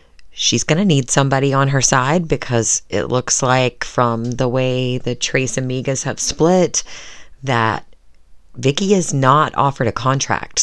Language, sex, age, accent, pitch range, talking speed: English, female, 30-49, American, 120-145 Hz, 150 wpm